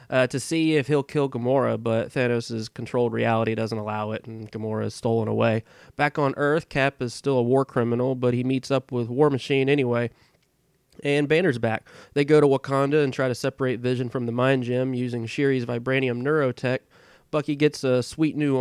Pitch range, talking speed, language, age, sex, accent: 120-135 Hz, 195 wpm, English, 30-49, male, American